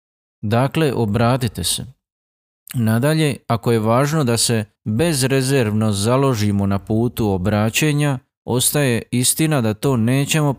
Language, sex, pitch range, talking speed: Croatian, male, 105-135 Hz, 110 wpm